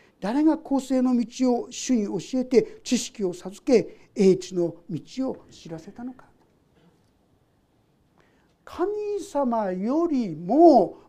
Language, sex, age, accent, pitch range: Japanese, male, 60-79, native, 215-320 Hz